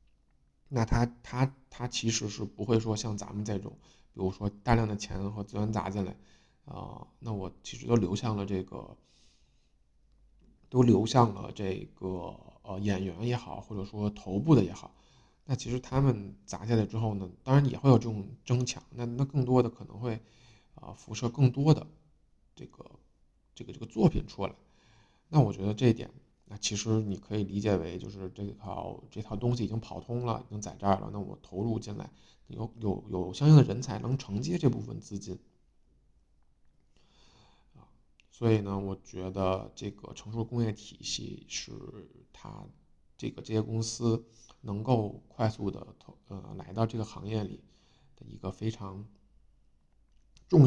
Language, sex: Chinese, male